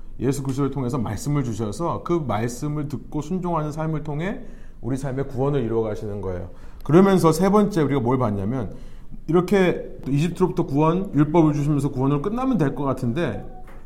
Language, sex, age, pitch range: Korean, male, 30-49, 125-185 Hz